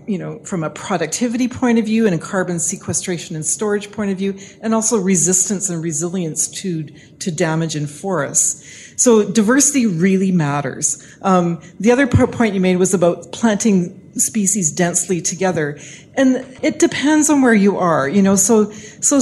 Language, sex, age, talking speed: English, female, 40-59, 170 wpm